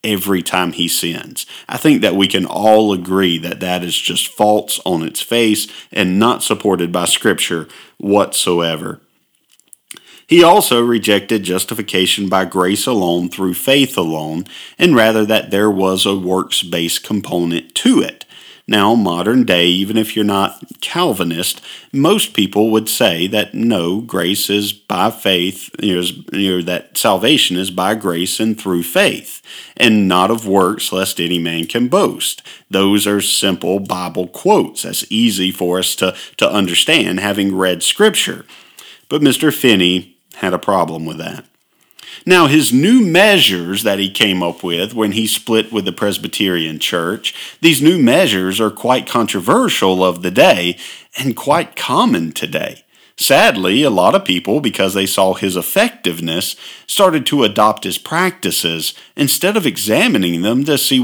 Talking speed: 150 wpm